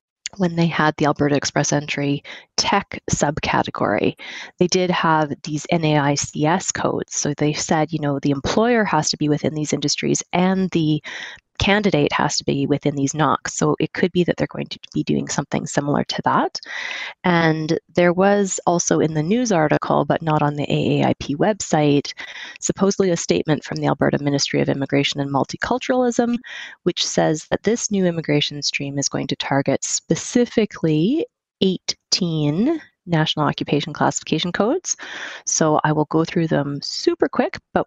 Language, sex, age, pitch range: English, female, 20-39, 145-185 Hz